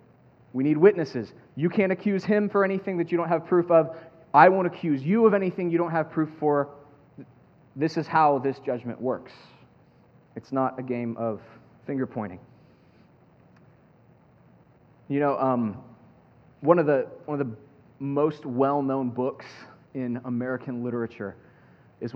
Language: English